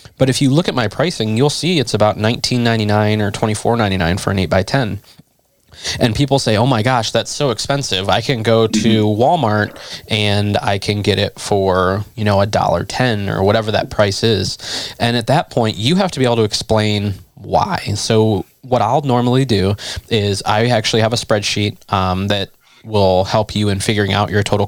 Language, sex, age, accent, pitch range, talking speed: English, male, 20-39, American, 100-120 Hz, 200 wpm